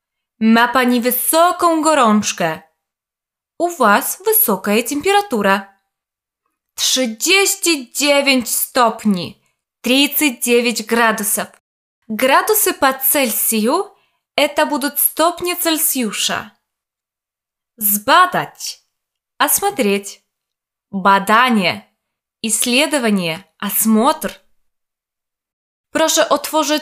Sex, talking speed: female, 50 wpm